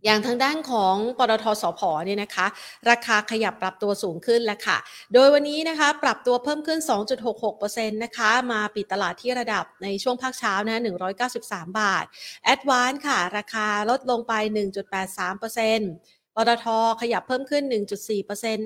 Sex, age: female, 30-49